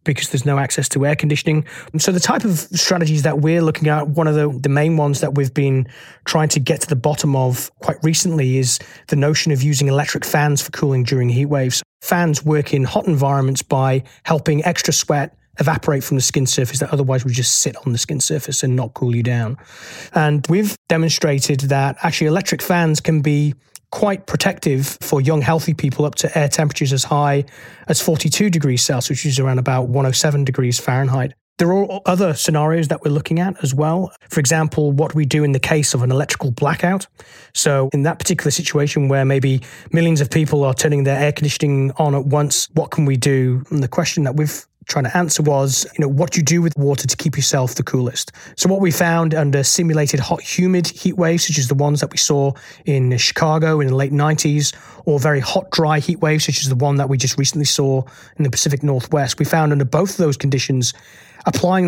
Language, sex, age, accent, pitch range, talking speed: English, male, 30-49, British, 135-160 Hz, 215 wpm